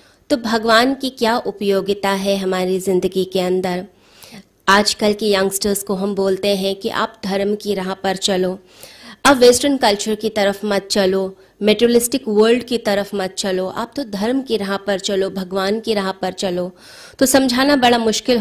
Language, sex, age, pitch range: Hindi, female, 20-39, 190-220 Hz